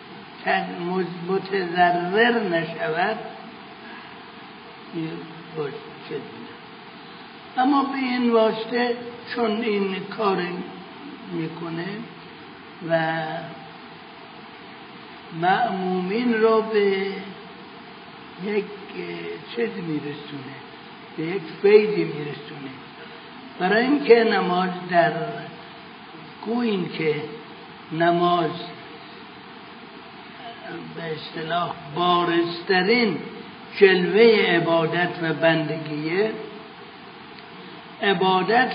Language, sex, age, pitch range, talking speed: Persian, male, 60-79, 175-225 Hz, 55 wpm